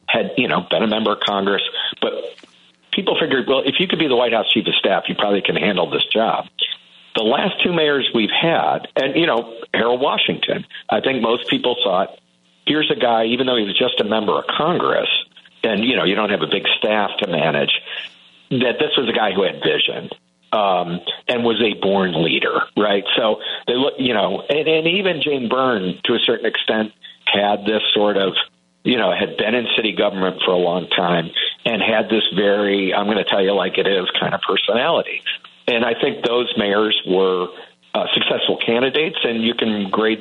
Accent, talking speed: American, 205 wpm